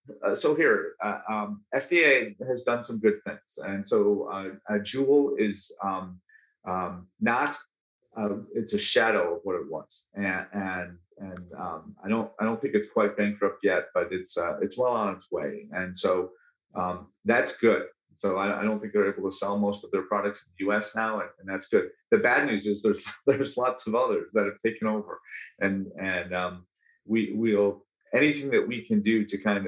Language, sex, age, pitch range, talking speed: English, male, 40-59, 95-115 Hz, 195 wpm